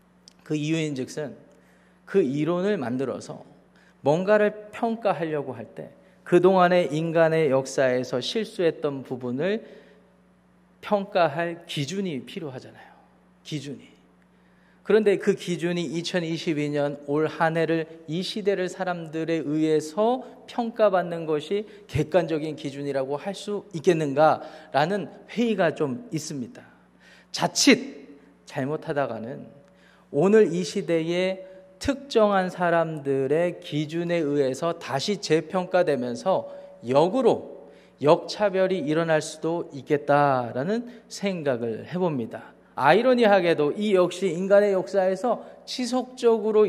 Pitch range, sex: 155-200 Hz, male